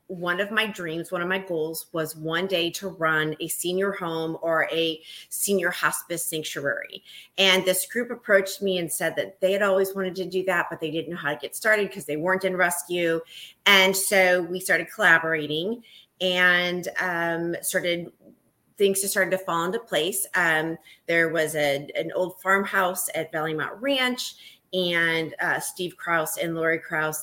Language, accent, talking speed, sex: English, American, 175 wpm, female